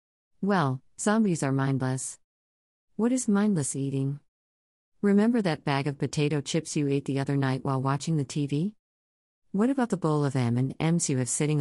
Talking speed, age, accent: 165 wpm, 50-69, American